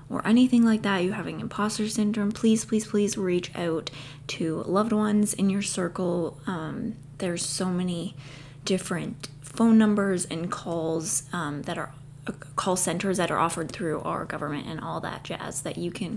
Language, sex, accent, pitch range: English, female, American, 155-205 Hz